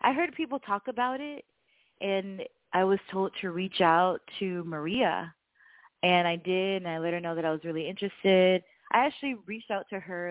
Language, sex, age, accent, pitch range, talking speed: English, female, 20-39, American, 165-215 Hz, 200 wpm